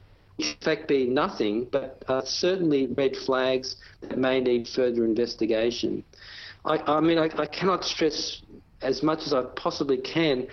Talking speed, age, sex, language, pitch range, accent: 155 wpm, 50-69, male, English, 125-150 Hz, Australian